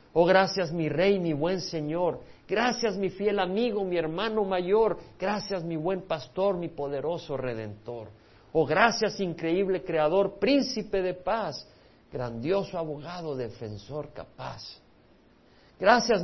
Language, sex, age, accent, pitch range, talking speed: Spanish, male, 50-69, Mexican, 140-195 Hz, 120 wpm